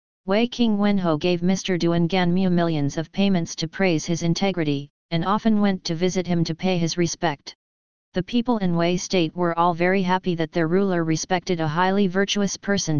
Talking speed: 175 wpm